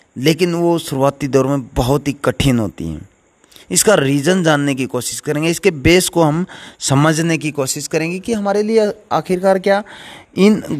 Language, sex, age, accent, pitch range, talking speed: Hindi, male, 30-49, native, 135-185 Hz, 165 wpm